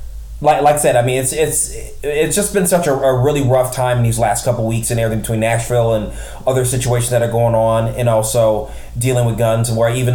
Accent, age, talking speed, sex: American, 20-39, 240 wpm, male